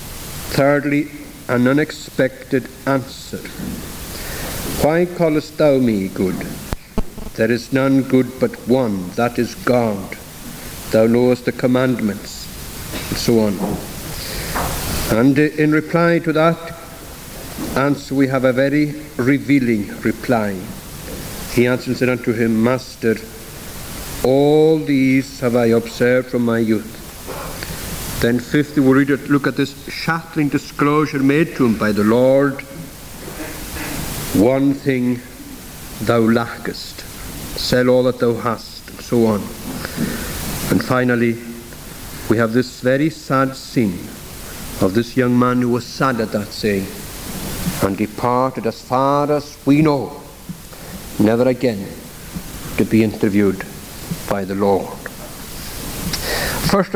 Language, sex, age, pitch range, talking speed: English, male, 60-79, 115-140 Hz, 120 wpm